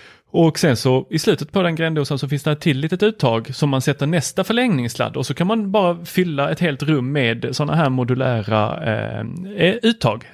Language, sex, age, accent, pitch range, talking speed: Swedish, male, 30-49, native, 110-155 Hz, 205 wpm